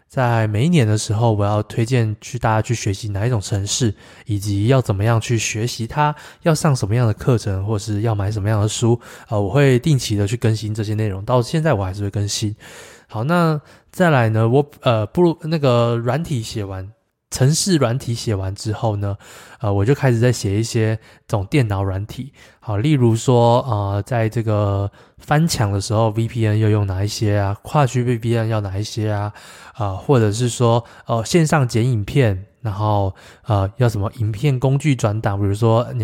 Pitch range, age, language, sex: 105-130 Hz, 20-39, Chinese, male